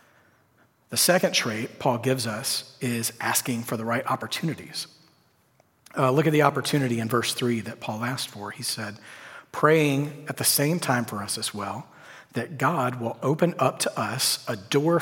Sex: male